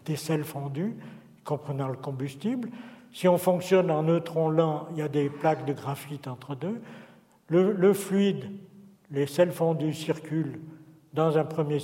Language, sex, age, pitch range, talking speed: French, male, 60-79, 150-175 Hz, 155 wpm